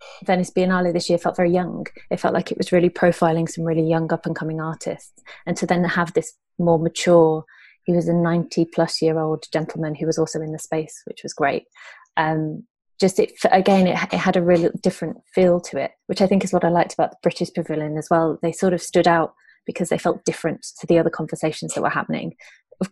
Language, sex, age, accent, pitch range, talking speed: English, female, 20-39, British, 160-180 Hz, 225 wpm